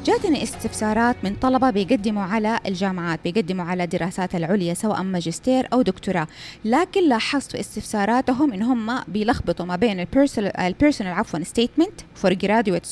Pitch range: 200-280 Hz